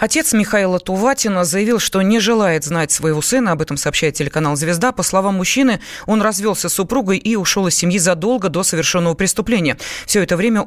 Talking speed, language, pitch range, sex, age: 185 wpm, Russian, 165-210 Hz, female, 20-39